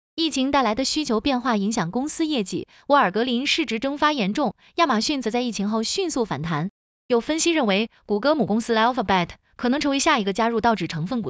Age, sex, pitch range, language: 20-39, female, 205-305 Hz, Chinese